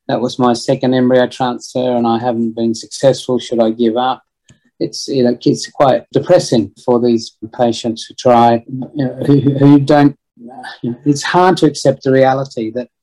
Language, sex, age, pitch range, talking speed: English, male, 40-59, 120-135 Hz, 170 wpm